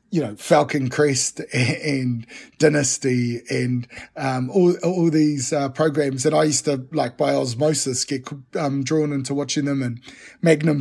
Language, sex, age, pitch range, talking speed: English, male, 30-49, 135-160 Hz, 155 wpm